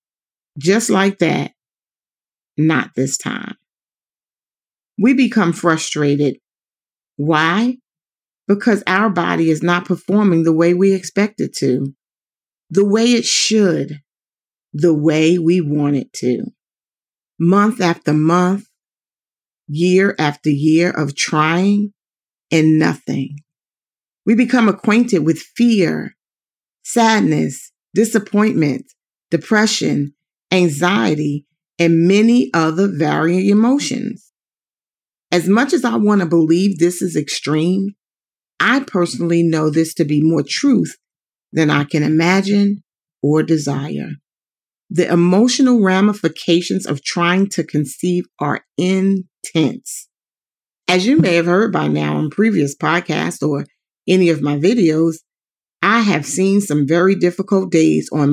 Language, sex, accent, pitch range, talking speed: English, female, American, 155-200 Hz, 115 wpm